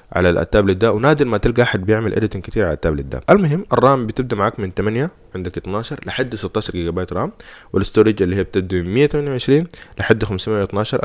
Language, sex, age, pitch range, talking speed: Arabic, male, 20-39, 90-120 Hz, 185 wpm